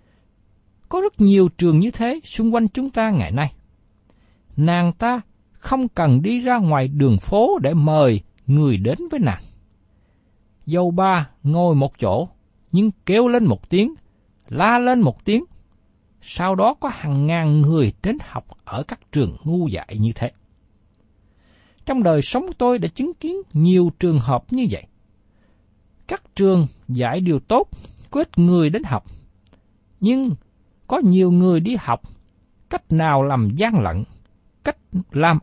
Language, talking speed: Vietnamese, 150 wpm